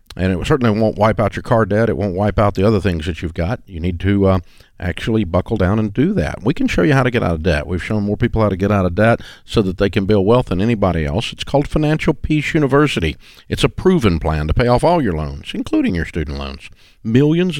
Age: 50-69